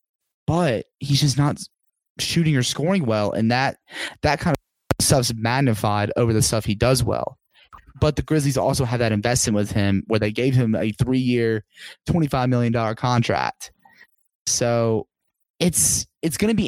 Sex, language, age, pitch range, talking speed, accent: male, English, 20-39, 115-145 Hz, 160 wpm, American